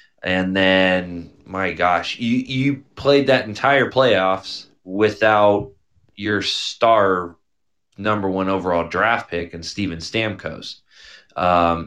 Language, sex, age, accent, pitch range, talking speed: English, male, 20-39, American, 90-110 Hz, 110 wpm